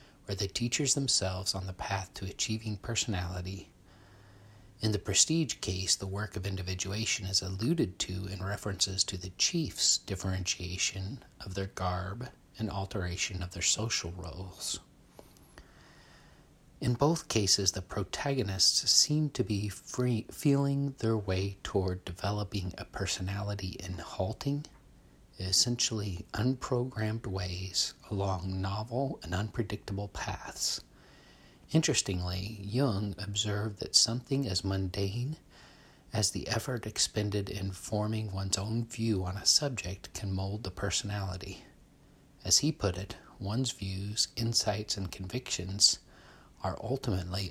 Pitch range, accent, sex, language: 95-110 Hz, American, male, English